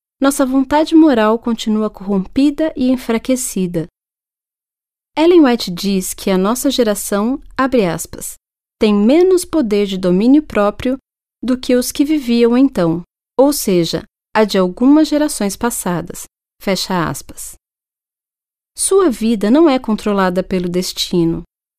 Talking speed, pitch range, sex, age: 120 wpm, 190-270 Hz, female, 30-49